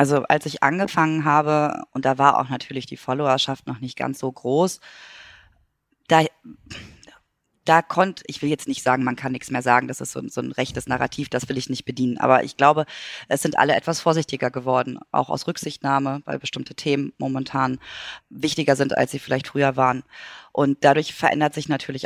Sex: female